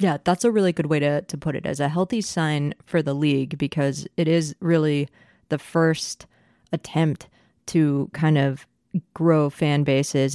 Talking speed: 175 wpm